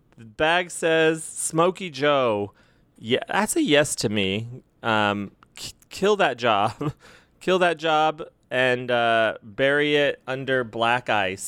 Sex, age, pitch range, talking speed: male, 30-49, 120-170 Hz, 135 wpm